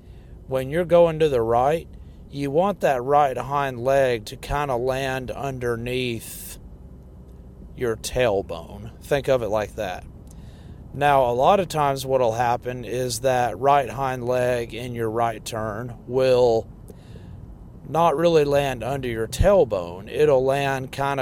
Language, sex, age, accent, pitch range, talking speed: English, male, 40-59, American, 105-135 Hz, 145 wpm